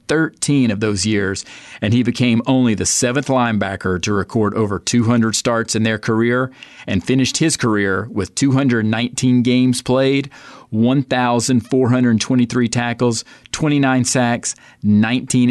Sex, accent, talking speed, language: male, American, 125 wpm, English